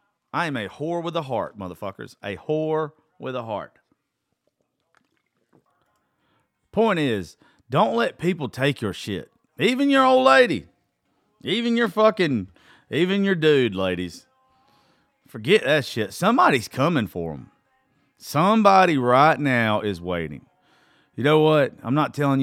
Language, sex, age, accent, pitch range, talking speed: English, male, 40-59, American, 105-180 Hz, 135 wpm